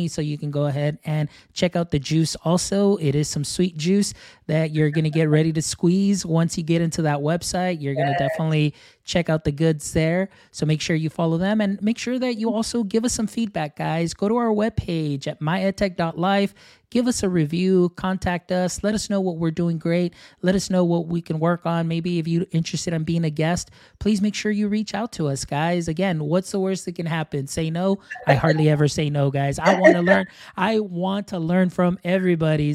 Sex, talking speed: male, 230 wpm